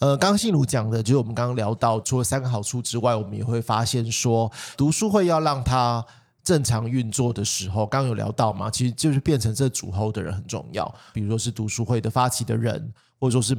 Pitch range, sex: 110-135 Hz, male